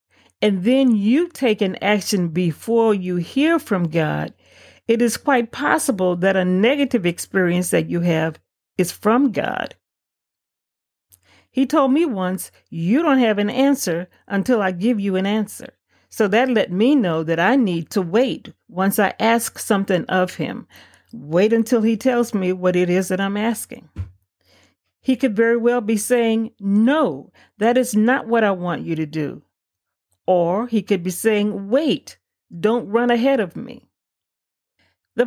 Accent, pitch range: American, 185-245 Hz